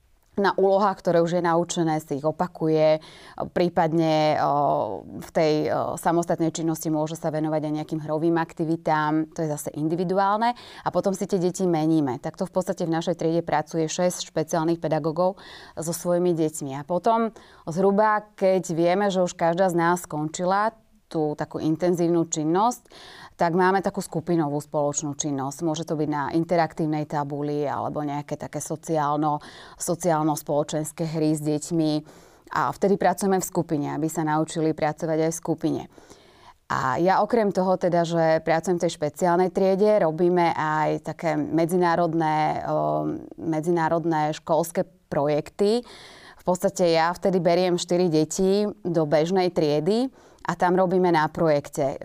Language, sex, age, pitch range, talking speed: Slovak, female, 20-39, 155-180 Hz, 145 wpm